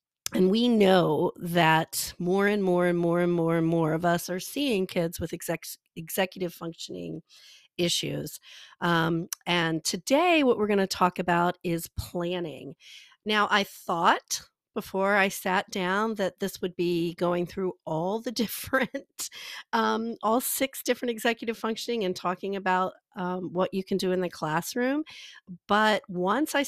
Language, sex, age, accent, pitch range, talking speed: English, female, 40-59, American, 170-210 Hz, 155 wpm